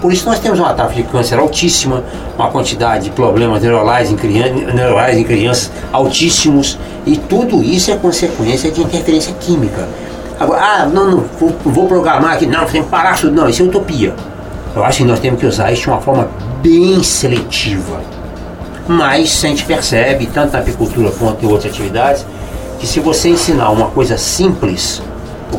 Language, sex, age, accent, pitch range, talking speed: Portuguese, male, 60-79, Brazilian, 105-145 Hz, 180 wpm